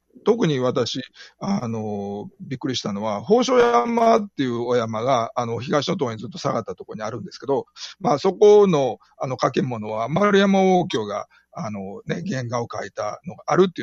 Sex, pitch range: male, 120-200 Hz